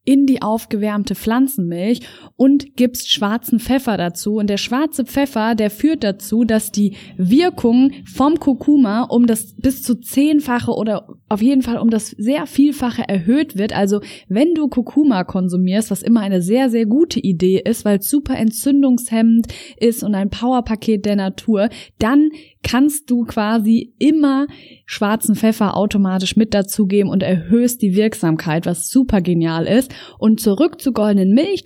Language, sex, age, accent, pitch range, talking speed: German, female, 20-39, German, 205-265 Hz, 155 wpm